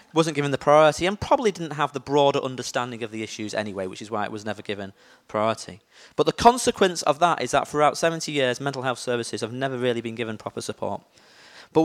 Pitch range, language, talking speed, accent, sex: 125-170 Hz, English, 225 wpm, British, male